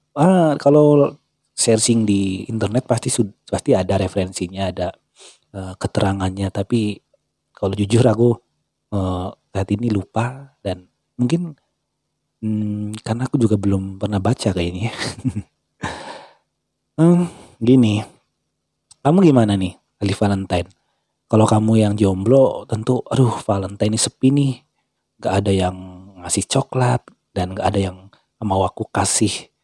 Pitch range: 95-115 Hz